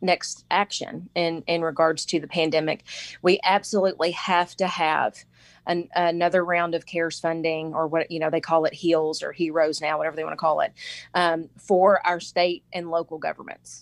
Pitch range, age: 160-180 Hz, 30-49